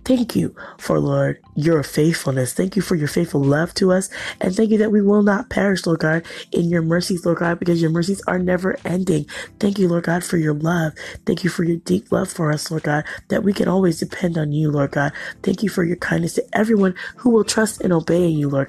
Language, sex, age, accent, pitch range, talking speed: English, female, 20-39, American, 145-185 Hz, 245 wpm